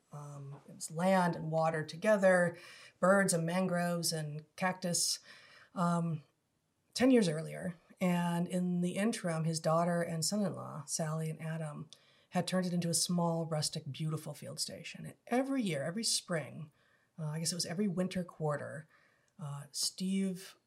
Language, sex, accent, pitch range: English, female, American, 155-185 Hz